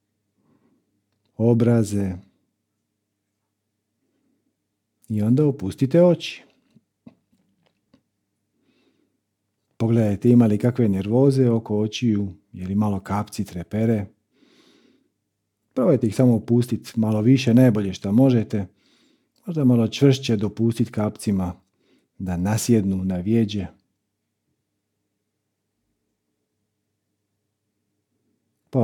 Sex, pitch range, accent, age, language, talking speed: male, 100-120 Hz, Bosnian, 50-69, Croatian, 70 wpm